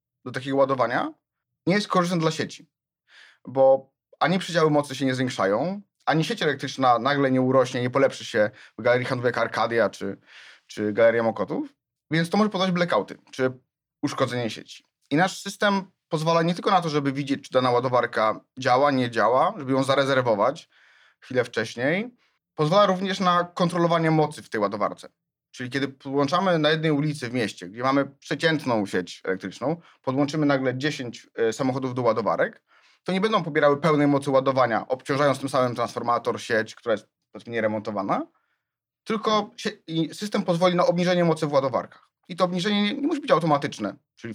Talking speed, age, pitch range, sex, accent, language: 160 wpm, 30-49, 130-180 Hz, male, native, Polish